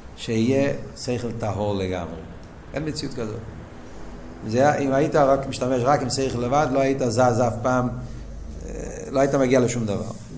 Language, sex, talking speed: Hebrew, male, 150 wpm